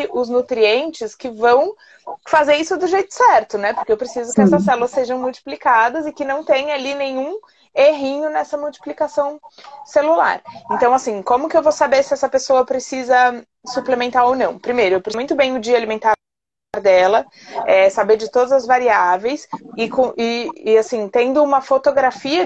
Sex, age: female, 20-39